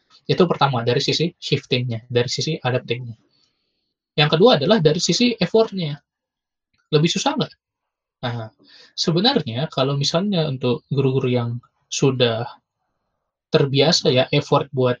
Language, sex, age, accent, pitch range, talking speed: Indonesian, male, 20-39, native, 125-160 Hz, 115 wpm